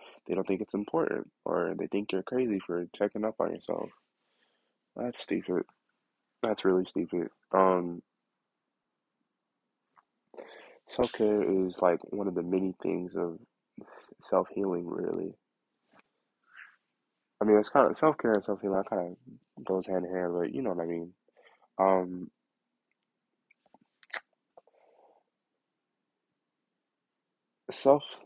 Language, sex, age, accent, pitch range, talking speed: English, male, 20-39, American, 90-110 Hz, 115 wpm